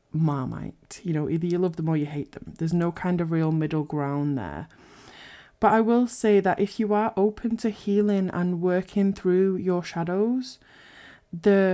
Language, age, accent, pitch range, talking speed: English, 20-39, British, 160-190 Hz, 185 wpm